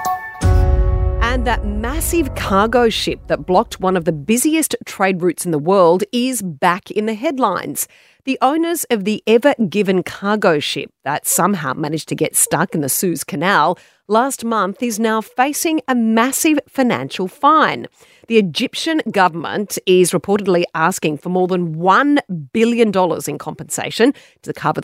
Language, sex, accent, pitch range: English, female, Australian, 165-245 Hz